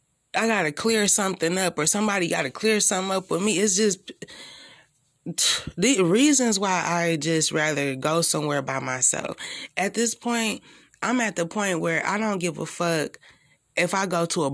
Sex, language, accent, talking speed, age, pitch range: female, English, American, 185 wpm, 20-39, 160-210 Hz